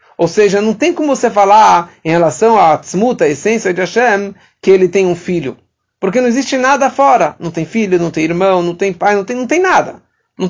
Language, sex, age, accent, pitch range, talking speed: English, male, 50-69, Brazilian, 160-220 Hz, 230 wpm